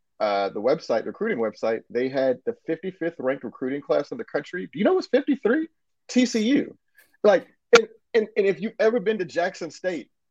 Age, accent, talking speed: 30-49, American, 185 wpm